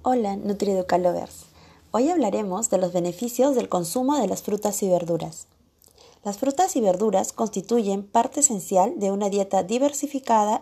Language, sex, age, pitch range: Spanish, female, 30-49, 185-245 Hz